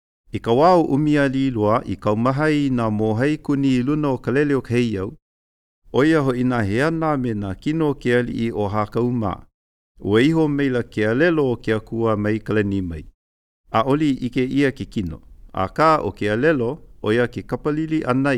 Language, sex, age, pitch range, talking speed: English, male, 50-69, 100-130 Hz, 155 wpm